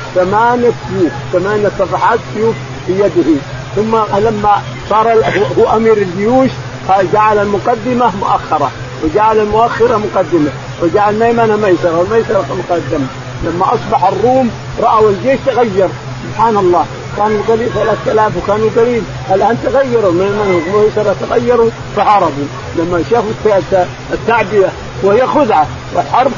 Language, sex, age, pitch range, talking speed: Arabic, male, 50-69, 170-220 Hz, 110 wpm